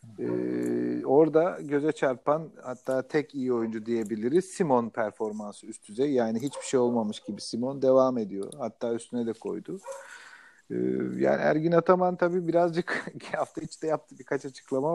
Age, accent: 40-59, native